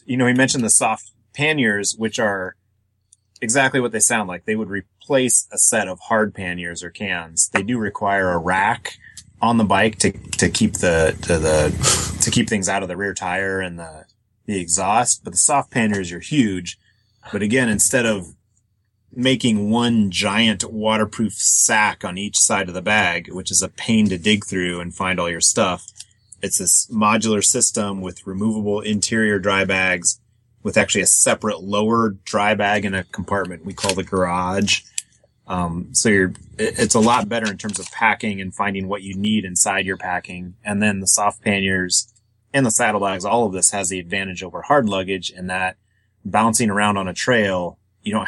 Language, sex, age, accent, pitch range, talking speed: English, male, 30-49, American, 95-110 Hz, 190 wpm